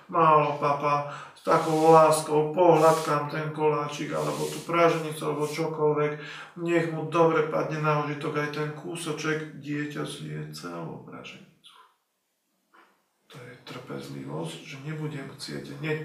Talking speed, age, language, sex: 125 wpm, 40-59, Slovak, male